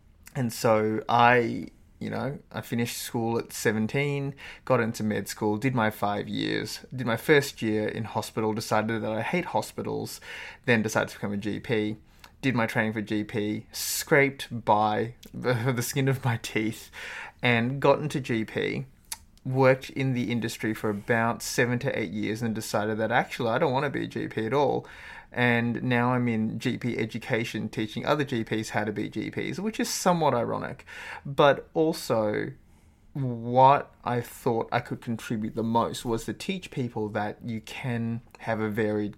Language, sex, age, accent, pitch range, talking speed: English, male, 20-39, Australian, 110-120 Hz, 170 wpm